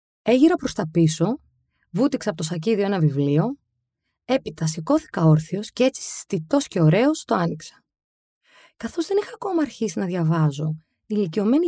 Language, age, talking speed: Greek, 20-39, 150 wpm